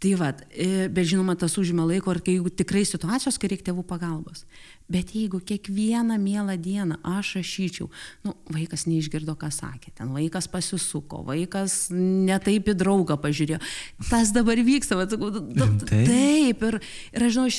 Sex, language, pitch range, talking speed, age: female, English, 180-235 Hz, 145 wpm, 30-49